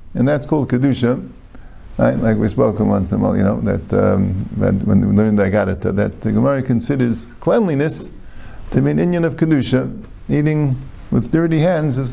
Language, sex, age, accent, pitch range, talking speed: English, male, 50-69, American, 95-155 Hz, 185 wpm